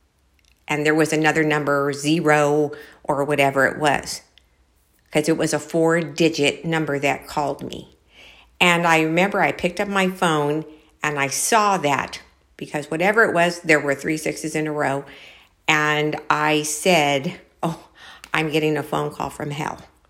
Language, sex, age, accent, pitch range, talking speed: English, female, 50-69, American, 145-180 Hz, 160 wpm